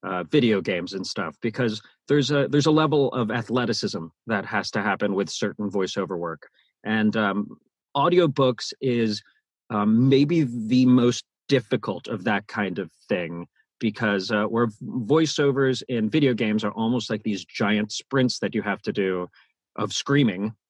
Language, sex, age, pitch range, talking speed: English, male, 40-59, 105-145 Hz, 160 wpm